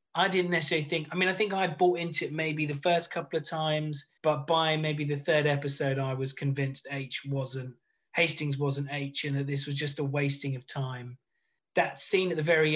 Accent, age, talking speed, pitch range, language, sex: British, 20-39, 215 wpm, 140-160 Hz, English, male